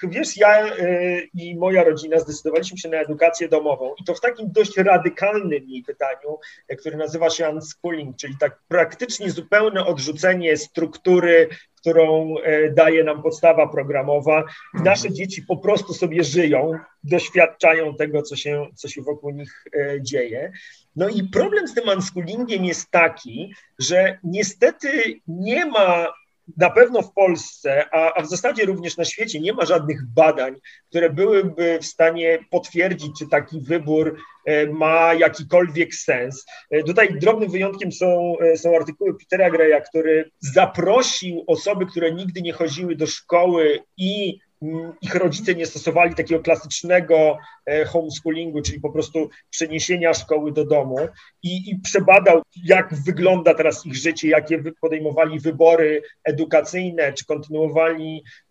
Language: Polish